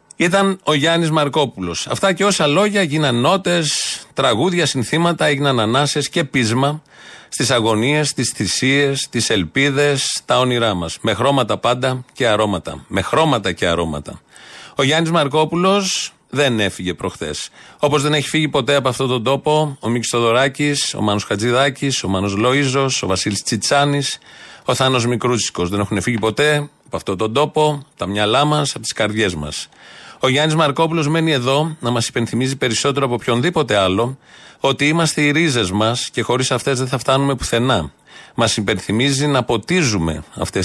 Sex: male